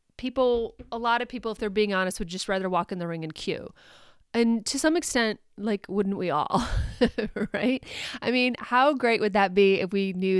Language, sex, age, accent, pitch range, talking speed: English, female, 30-49, American, 185-230 Hz, 215 wpm